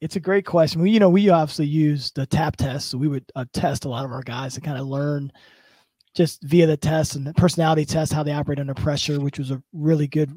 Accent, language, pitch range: American, English, 145-180 Hz